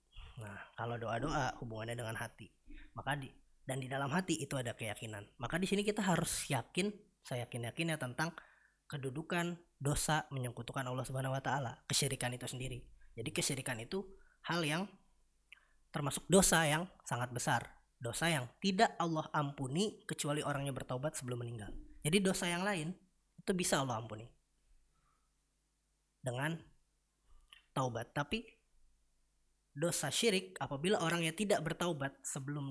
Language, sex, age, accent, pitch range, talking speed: Indonesian, female, 20-39, native, 125-170 Hz, 135 wpm